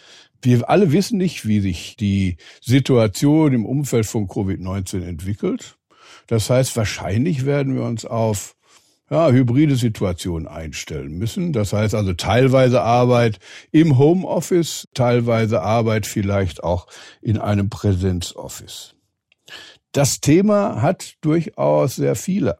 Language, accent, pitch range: German, German, 110-140 Hz